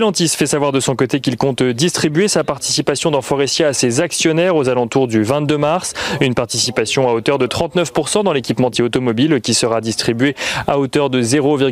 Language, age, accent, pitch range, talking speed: French, 30-49, French, 120-150 Hz, 185 wpm